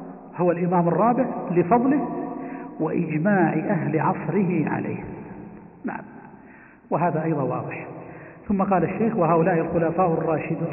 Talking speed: 100 wpm